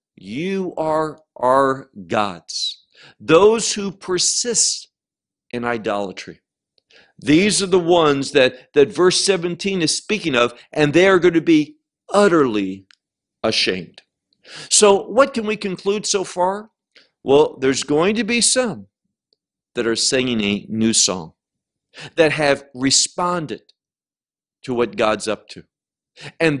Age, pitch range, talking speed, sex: 50-69, 115-180 Hz, 125 wpm, male